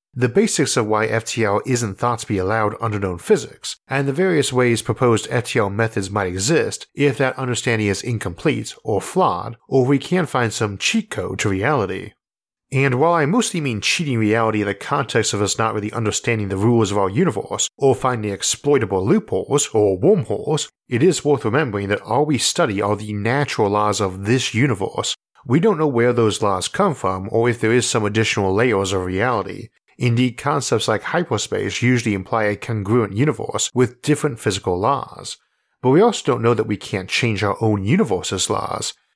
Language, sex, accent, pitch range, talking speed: English, male, American, 105-135 Hz, 185 wpm